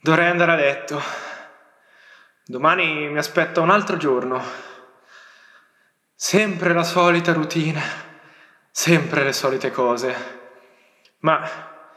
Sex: male